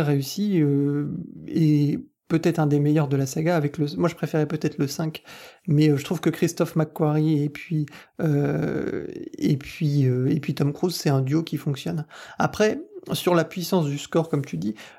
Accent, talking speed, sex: French, 190 wpm, male